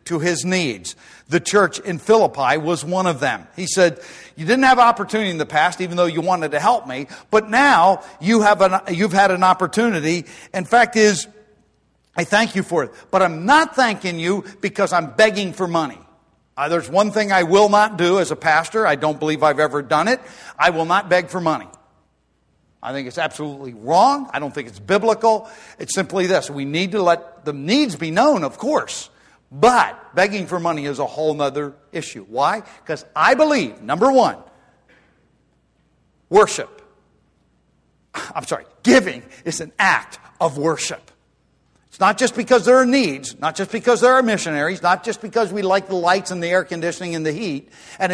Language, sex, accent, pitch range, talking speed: English, male, American, 160-210 Hz, 190 wpm